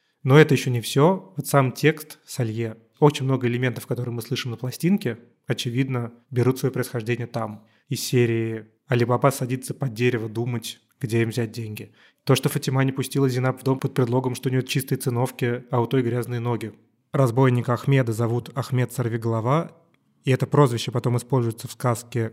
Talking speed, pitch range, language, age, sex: 175 wpm, 120-135 Hz, Russian, 20-39, male